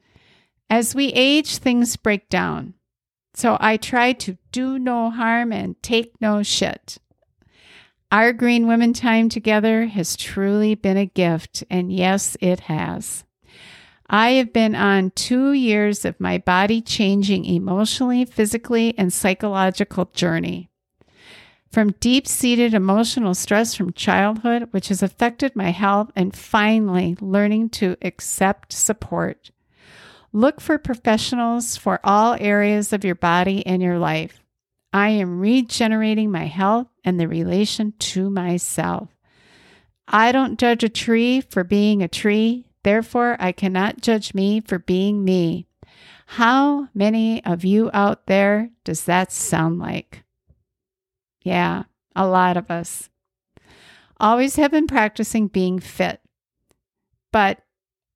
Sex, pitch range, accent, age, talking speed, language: female, 185-230 Hz, American, 50-69, 130 wpm, English